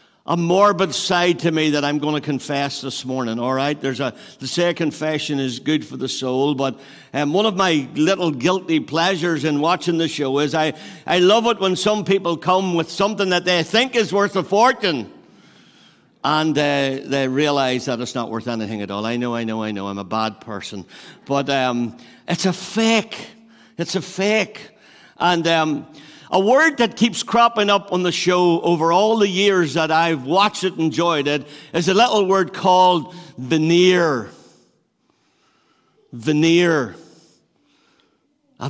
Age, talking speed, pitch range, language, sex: 60-79, 175 wpm, 145-200 Hz, English, male